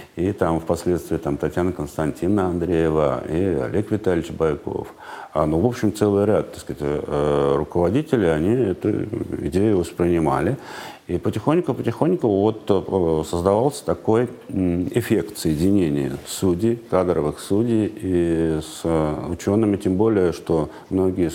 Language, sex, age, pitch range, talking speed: Russian, male, 50-69, 80-100 Hz, 110 wpm